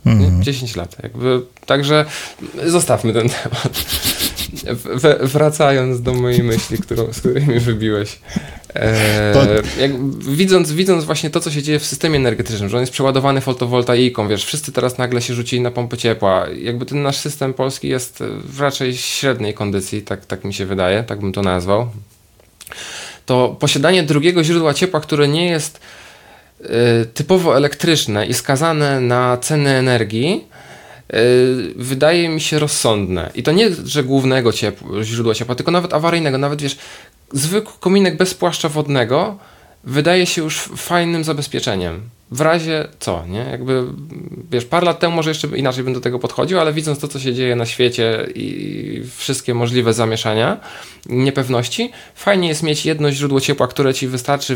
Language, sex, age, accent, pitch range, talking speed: Polish, male, 20-39, native, 115-150 Hz, 155 wpm